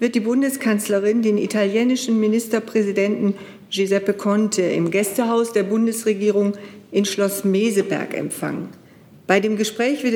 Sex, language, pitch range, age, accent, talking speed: female, German, 195-230 Hz, 50-69, German, 120 wpm